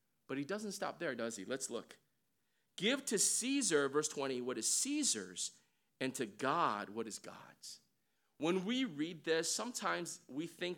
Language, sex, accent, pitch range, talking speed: English, male, American, 150-230 Hz, 165 wpm